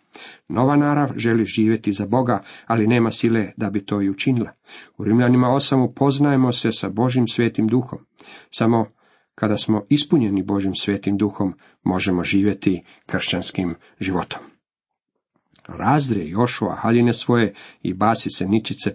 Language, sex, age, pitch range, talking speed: Croatian, male, 50-69, 105-130 Hz, 135 wpm